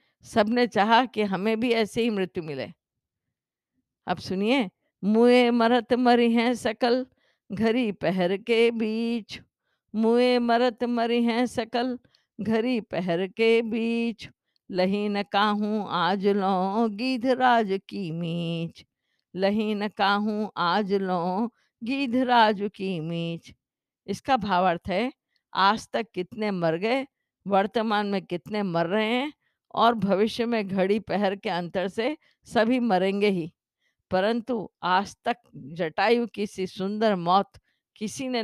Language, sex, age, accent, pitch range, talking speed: Hindi, female, 50-69, native, 190-235 Hz, 105 wpm